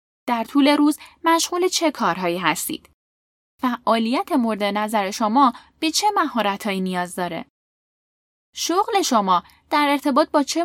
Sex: female